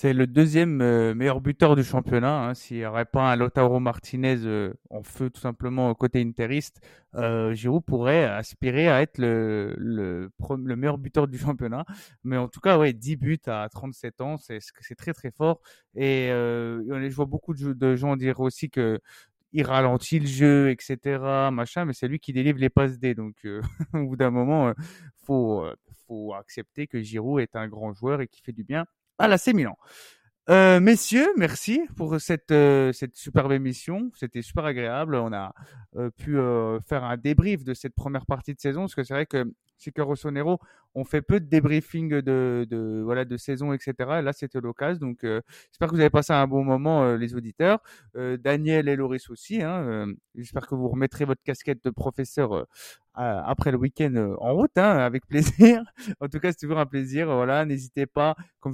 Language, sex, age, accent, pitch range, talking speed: French, male, 30-49, French, 125-150 Hz, 200 wpm